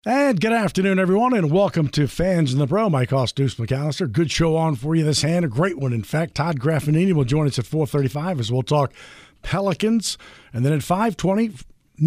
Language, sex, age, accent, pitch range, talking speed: English, male, 50-69, American, 130-180 Hz, 210 wpm